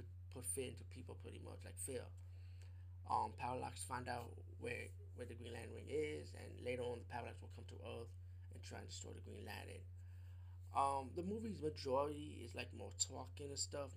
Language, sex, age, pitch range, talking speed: English, male, 20-39, 90-95 Hz, 190 wpm